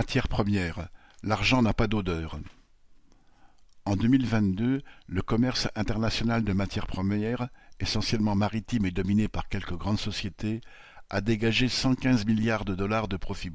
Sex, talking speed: male, 140 wpm